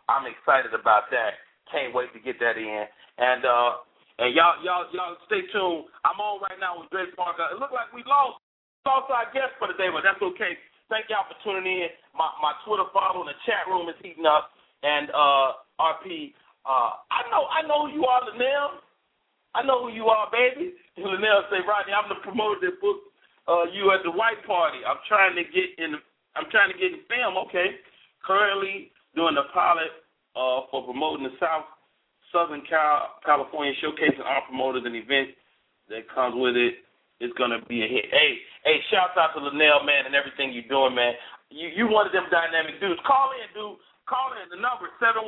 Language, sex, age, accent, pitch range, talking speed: English, male, 40-59, American, 150-225 Hz, 205 wpm